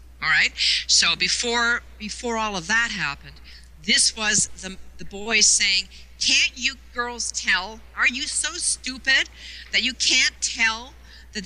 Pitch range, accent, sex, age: 180-235 Hz, American, female, 50-69